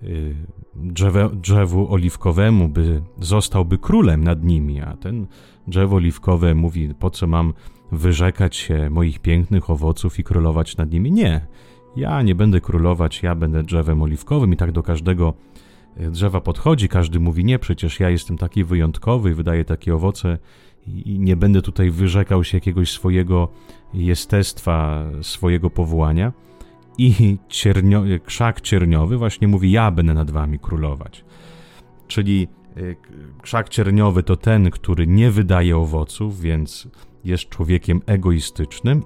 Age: 30-49